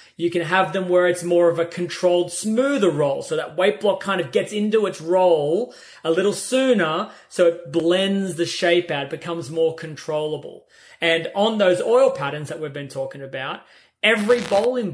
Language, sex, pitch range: English, male, 160-195 Hz